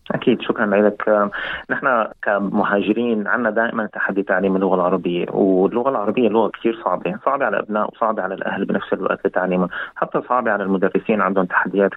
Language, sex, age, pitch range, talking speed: Arabic, male, 30-49, 95-105 Hz, 155 wpm